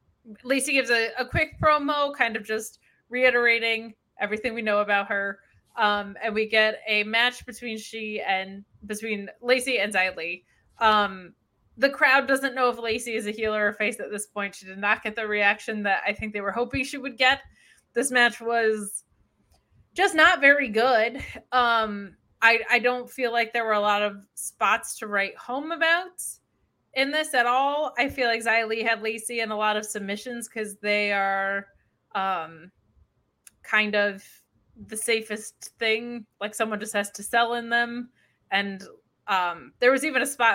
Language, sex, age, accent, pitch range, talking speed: English, female, 20-39, American, 205-245 Hz, 180 wpm